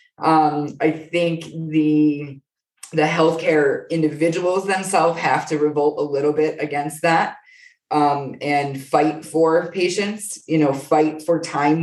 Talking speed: 130 wpm